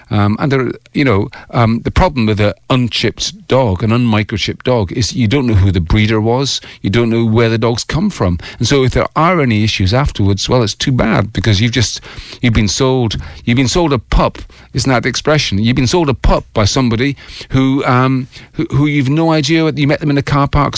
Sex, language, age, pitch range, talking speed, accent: male, English, 40-59, 105-130 Hz, 230 wpm, British